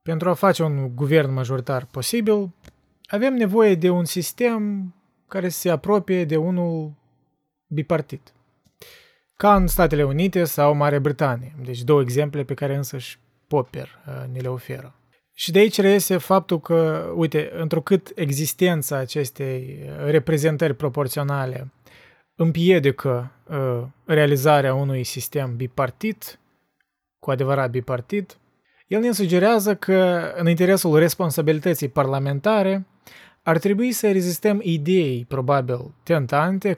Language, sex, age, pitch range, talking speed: Romanian, male, 20-39, 140-180 Hz, 115 wpm